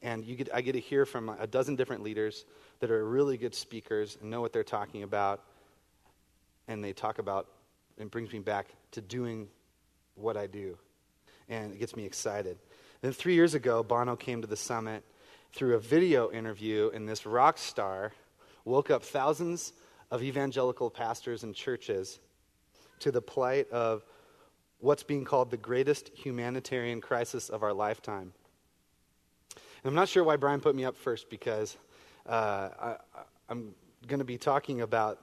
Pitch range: 110-145 Hz